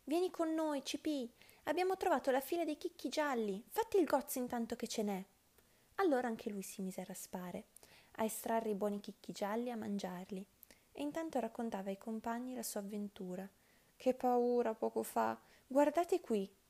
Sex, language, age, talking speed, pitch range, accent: female, Italian, 20-39, 175 wpm, 205-270 Hz, native